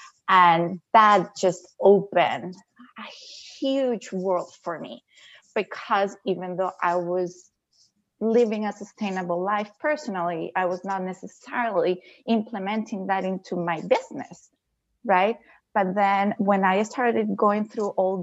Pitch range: 180-220 Hz